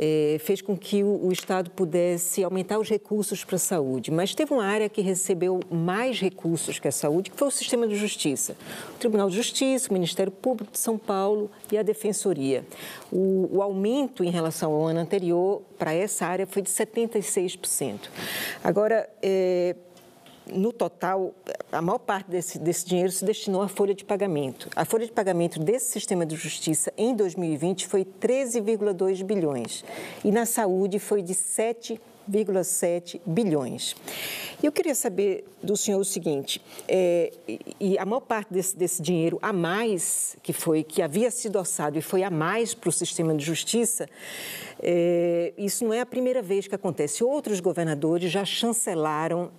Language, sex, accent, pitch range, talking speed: Portuguese, female, Brazilian, 175-215 Hz, 170 wpm